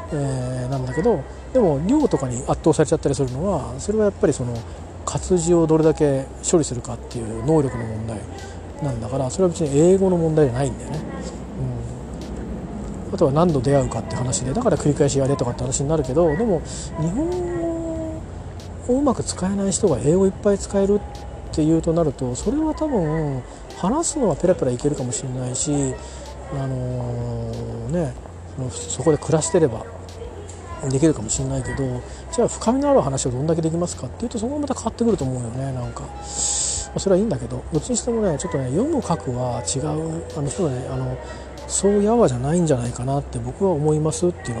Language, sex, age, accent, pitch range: Japanese, male, 40-59, native, 125-175 Hz